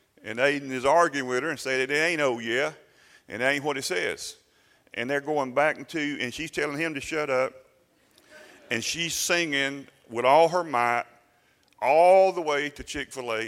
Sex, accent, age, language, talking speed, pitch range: male, American, 40-59, English, 195 wpm, 120-155 Hz